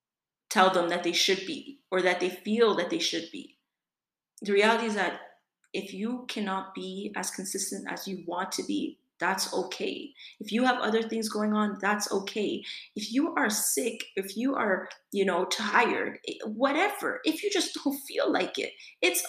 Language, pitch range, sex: English, 200-240 Hz, female